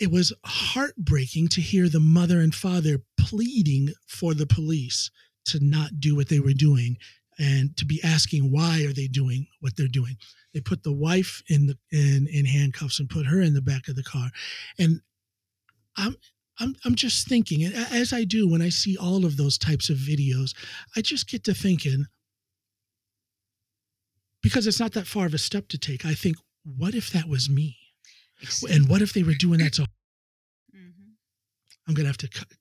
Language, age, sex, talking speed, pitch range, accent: English, 50-69, male, 190 wpm, 130-180 Hz, American